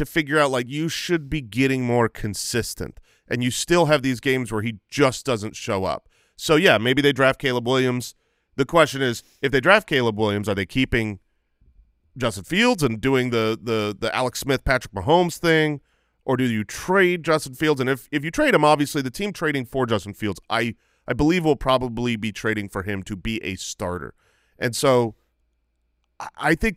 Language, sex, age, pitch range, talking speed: English, male, 30-49, 110-150 Hz, 195 wpm